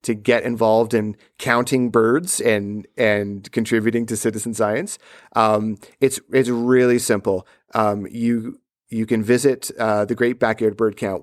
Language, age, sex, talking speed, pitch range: English, 30-49, male, 150 wpm, 115-135 Hz